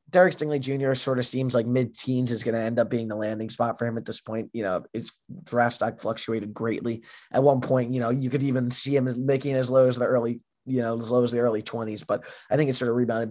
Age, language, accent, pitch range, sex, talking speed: 20-39, English, American, 115-135 Hz, male, 270 wpm